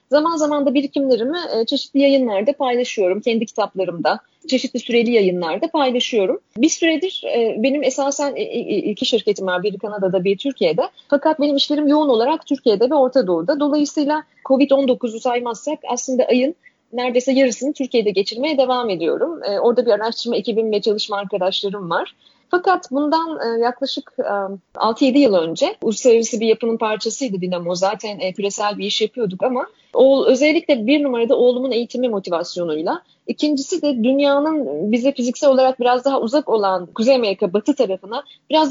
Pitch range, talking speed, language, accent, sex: 200-280 Hz, 140 wpm, Turkish, native, female